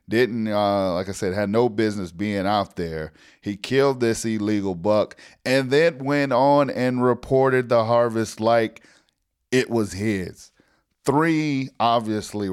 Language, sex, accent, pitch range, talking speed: English, male, American, 95-110 Hz, 145 wpm